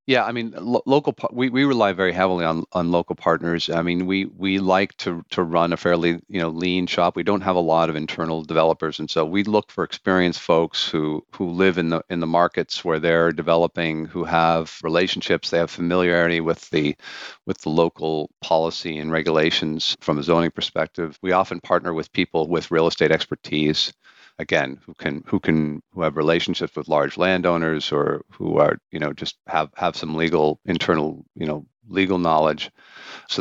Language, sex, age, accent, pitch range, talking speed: English, male, 50-69, American, 80-95 Hz, 195 wpm